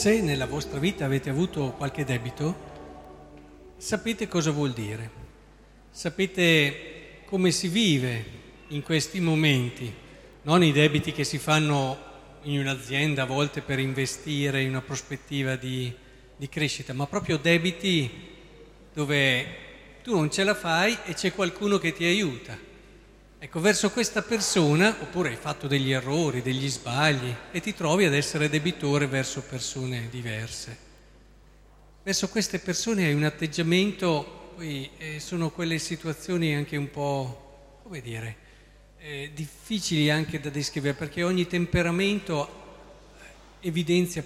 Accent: native